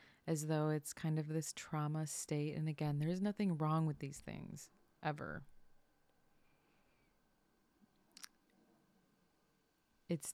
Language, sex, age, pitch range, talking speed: English, female, 30-49, 150-165 Hz, 110 wpm